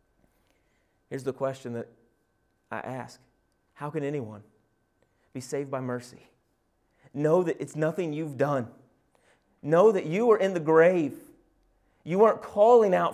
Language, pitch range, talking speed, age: English, 100-160 Hz, 135 wpm, 30-49